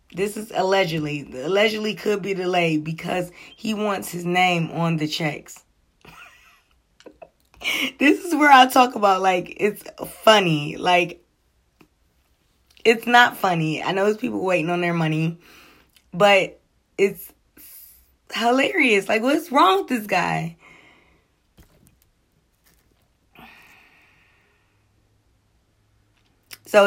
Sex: female